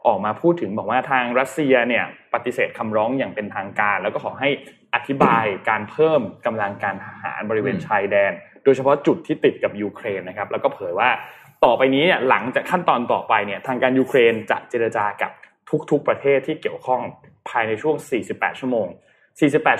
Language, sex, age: Thai, male, 20-39